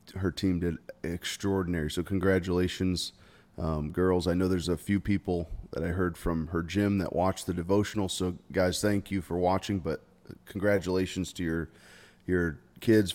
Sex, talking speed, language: male, 165 wpm, English